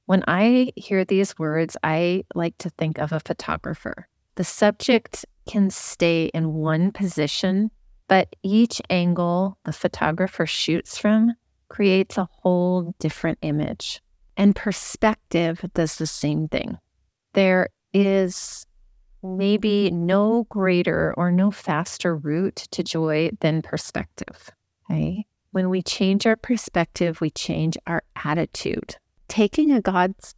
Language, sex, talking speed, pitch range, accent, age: English, female, 120 wpm, 160-195 Hz, American, 30-49